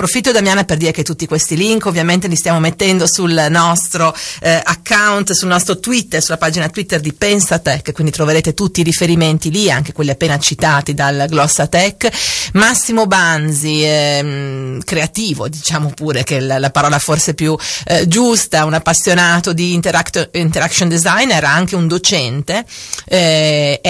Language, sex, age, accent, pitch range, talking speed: Italian, female, 40-59, native, 155-190 Hz, 155 wpm